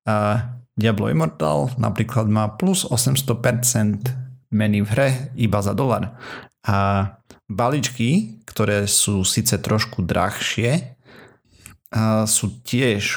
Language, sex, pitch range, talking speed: Slovak, male, 100-120 Hz, 105 wpm